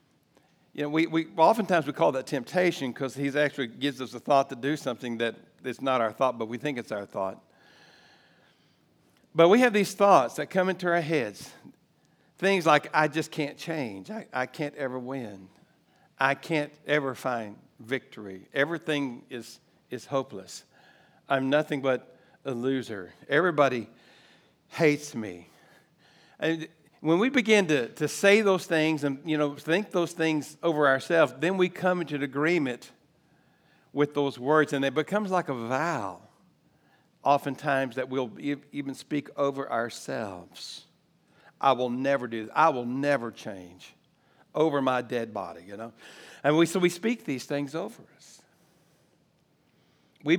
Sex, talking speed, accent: male, 160 wpm, American